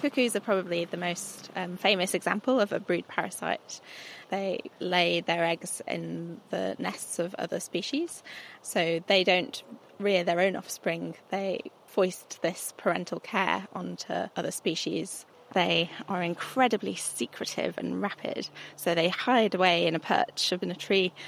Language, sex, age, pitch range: English, female, 20-39, 170-200 Hz